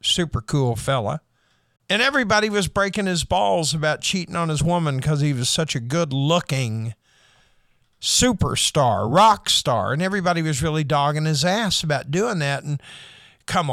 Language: English